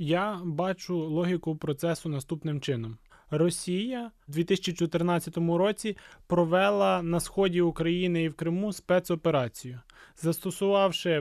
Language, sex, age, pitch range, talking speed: Ukrainian, male, 20-39, 165-200 Hz, 100 wpm